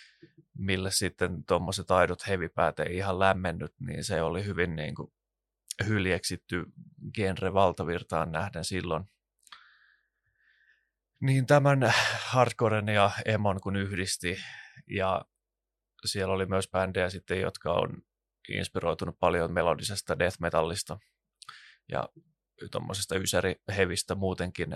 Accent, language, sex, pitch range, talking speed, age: native, Finnish, male, 90-100 Hz, 100 wpm, 20-39